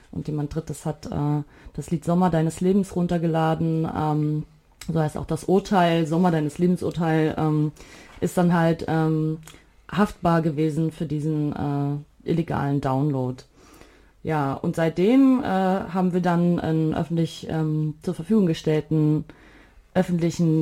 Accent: German